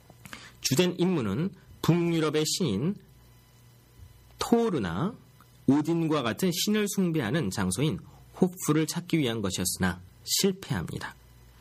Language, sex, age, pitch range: Korean, male, 30-49, 110-160 Hz